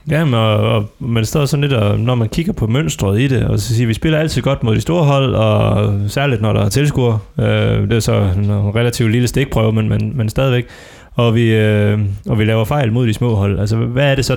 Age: 20-39